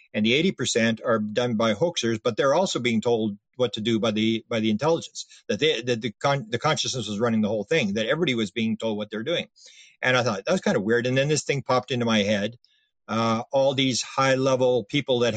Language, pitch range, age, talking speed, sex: English, 110-135 Hz, 50-69, 240 wpm, male